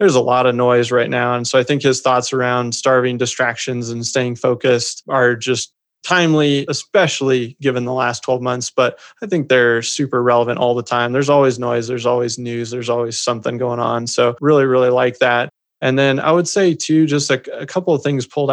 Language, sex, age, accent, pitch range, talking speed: English, male, 30-49, American, 125-135 Hz, 215 wpm